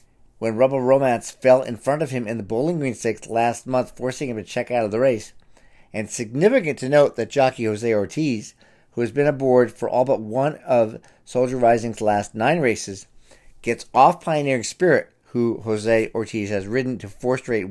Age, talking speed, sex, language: 50-69, 195 wpm, male, English